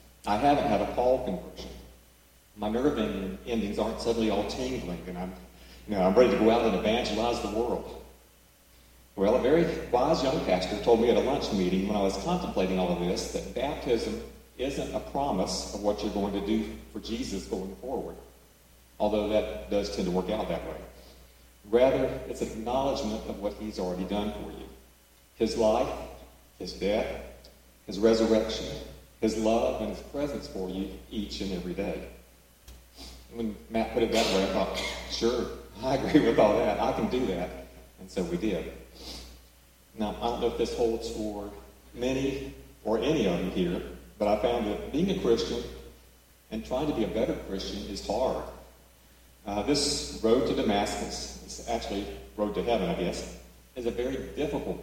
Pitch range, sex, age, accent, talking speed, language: 65-110 Hz, male, 40-59, American, 180 wpm, English